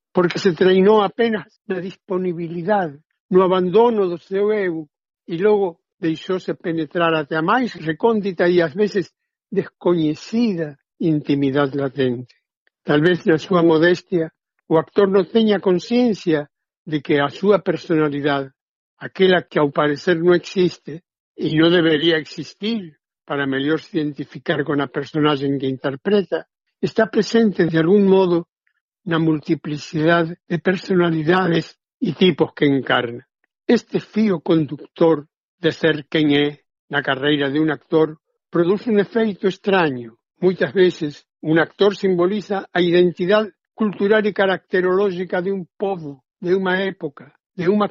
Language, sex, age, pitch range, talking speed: Portuguese, male, 60-79, 155-195 Hz, 130 wpm